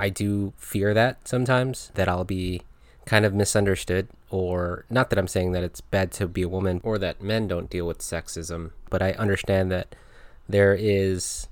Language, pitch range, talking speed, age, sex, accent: English, 90-110 Hz, 190 wpm, 20-39, male, American